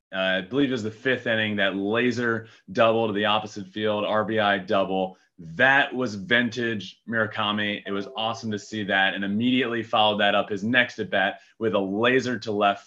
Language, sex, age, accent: English, male, 30-49, American